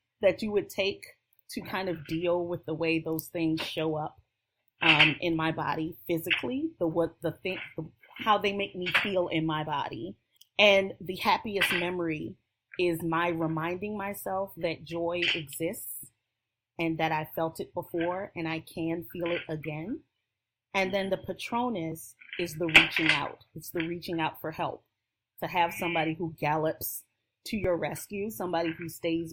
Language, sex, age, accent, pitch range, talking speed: English, female, 30-49, American, 155-180 Hz, 165 wpm